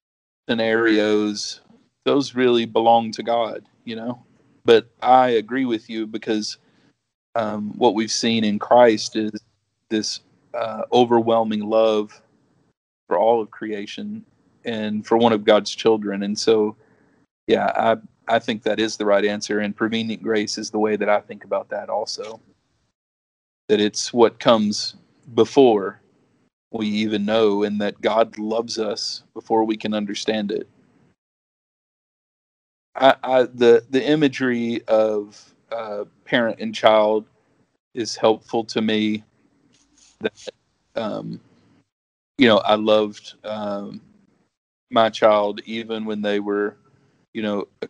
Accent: American